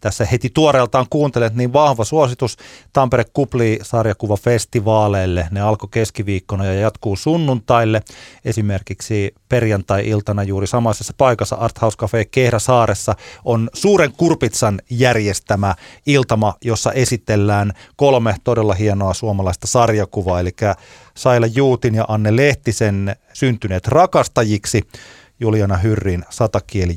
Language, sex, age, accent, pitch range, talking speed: Finnish, male, 30-49, native, 95-115 Hz, 105 wpm